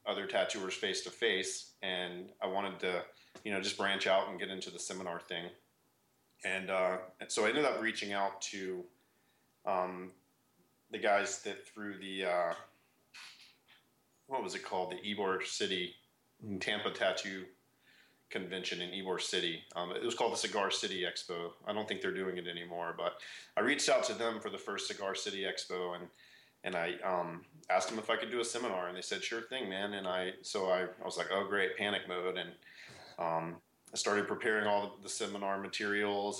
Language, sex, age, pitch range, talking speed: English, male, 30-49, 90-105 Hz, 190 wpm